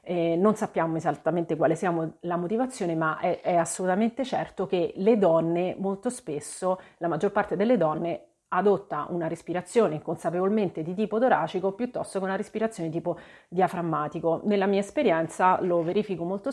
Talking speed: 150 wpm